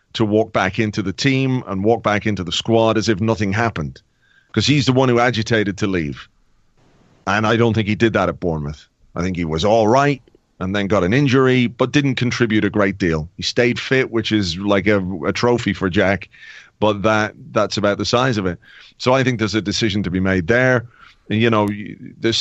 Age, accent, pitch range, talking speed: 30-49, British, 105-120 Hz, 220 wpm